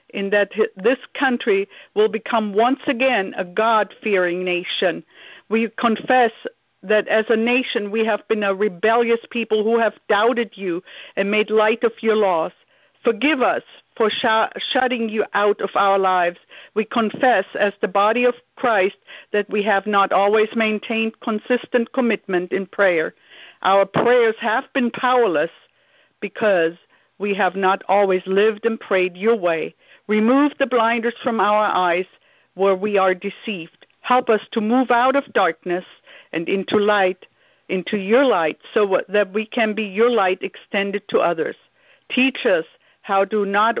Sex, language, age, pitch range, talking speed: female, English, 50-69, 195-235 Hz, 155 wpm